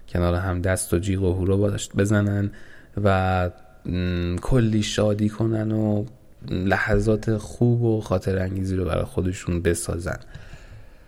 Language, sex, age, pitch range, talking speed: Persian, male, 20-39, 95-110 Hz, 125 wpm